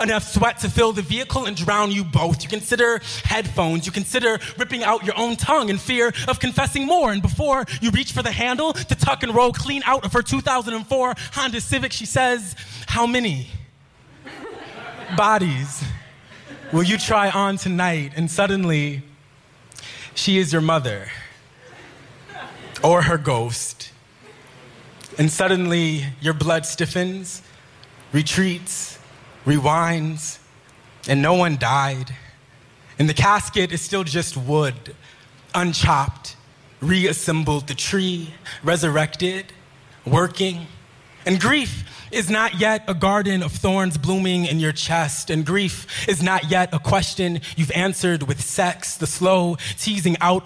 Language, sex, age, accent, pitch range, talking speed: English, male, 20-39, American, 140-195 Hz, 135 wpm